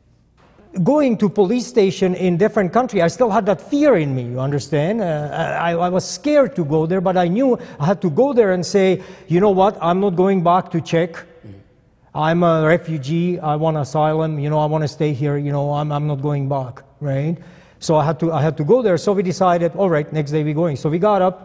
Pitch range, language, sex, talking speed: 150-185 Hz, English, male, 240 wpm